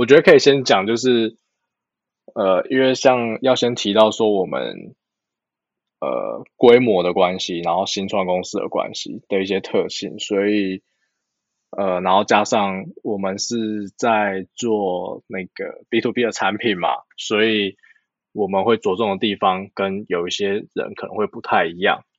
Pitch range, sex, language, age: 95-115 Hz, male, Chinese, 20-39